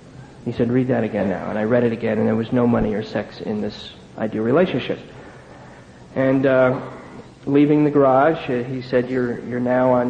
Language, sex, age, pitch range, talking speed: English, male, 40-59, 120-130 Hz, 200 wpm